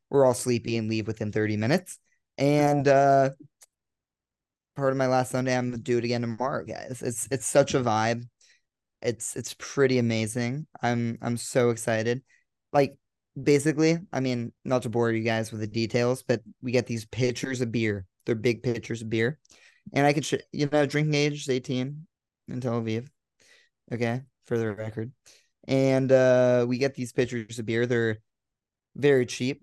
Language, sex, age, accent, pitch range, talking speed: English, male, 20-39, American, 115-130 Hz, 175 wpm